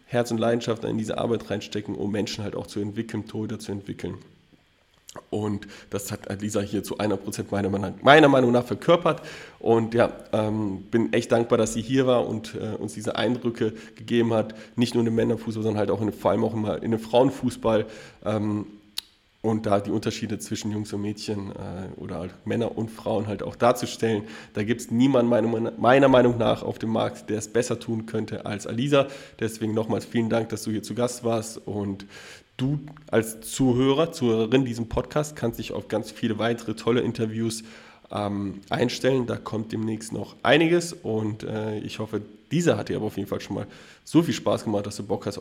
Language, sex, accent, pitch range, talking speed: German, male, German, 105-125 Hz, 195 wpm